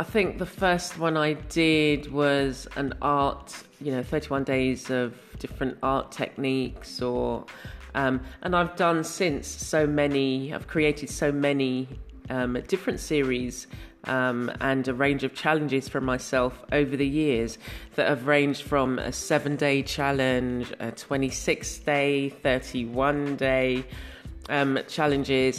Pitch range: 130-155 Hz